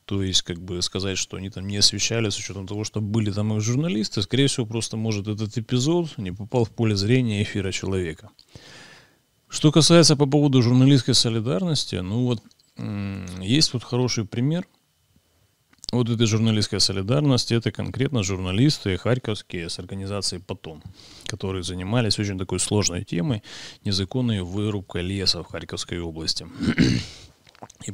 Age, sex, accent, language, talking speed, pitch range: 30-49, male, native, Russian, 145 wpm, 90-115 Hz